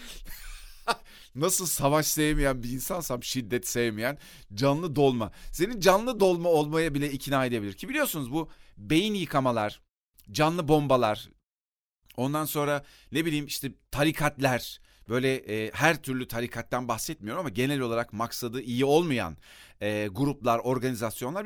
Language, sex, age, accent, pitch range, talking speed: Turkish, male, 40-59, native, 125-180 Hz, 125 wpm